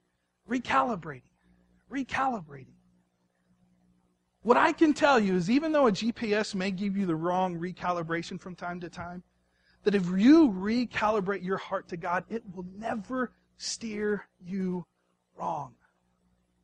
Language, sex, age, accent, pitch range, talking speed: English, male, 40-59, American, 165-245 Hz, 130 wpm